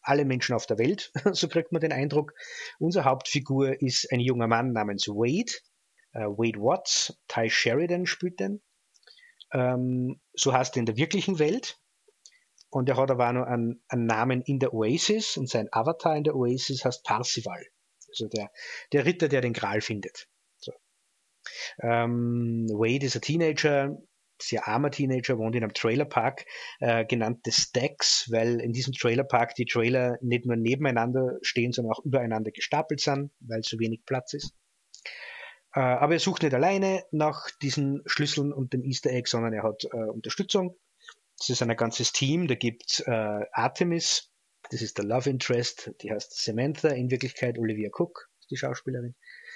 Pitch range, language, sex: 120-150 Hz, German, male